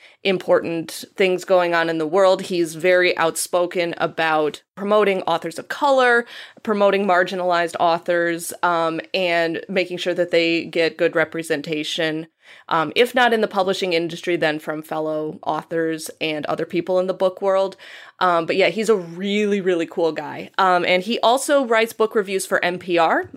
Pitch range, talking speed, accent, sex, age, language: 170-215 Hz, 160 wpm, American, female, 20-39, English